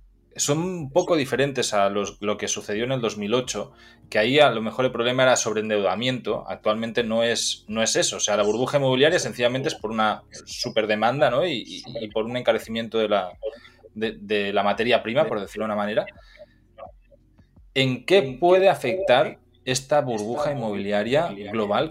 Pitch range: 110-130 Hz